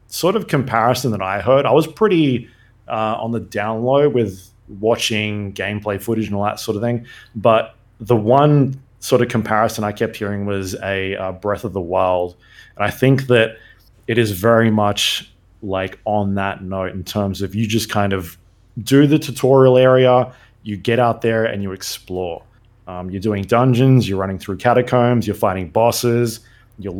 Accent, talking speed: Australian, 180 wpm